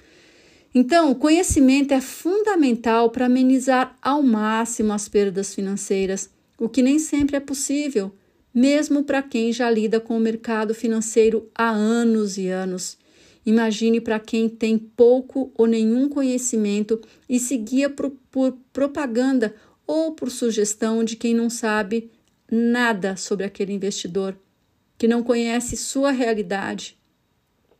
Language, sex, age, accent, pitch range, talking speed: Portuguese, female, 50-69, Brazilian, 205-255 Hz, 130 wpm